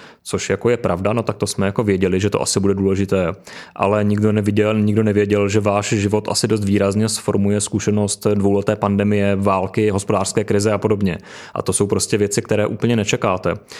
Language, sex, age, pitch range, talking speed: Czech, male, 20-39, 100-105 Hz, 185 wpm